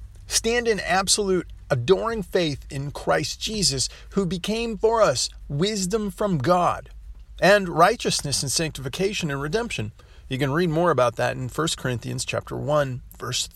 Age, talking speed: 40-59, 145 wpm